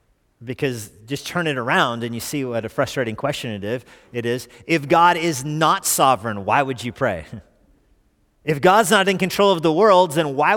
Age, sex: 40-59, male